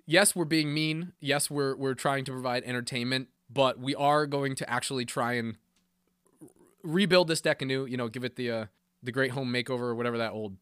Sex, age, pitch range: male, 20-39, 125-180 Hz